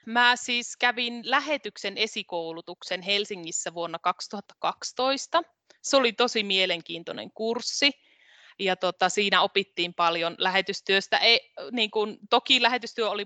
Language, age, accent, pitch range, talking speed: Finnish, 20-39, native, 180-225 Hz, 95 wpm